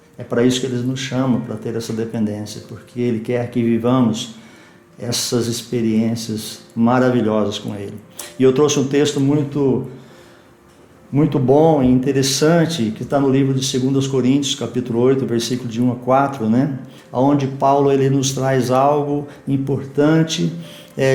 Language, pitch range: Portuguese, 125-150 Hz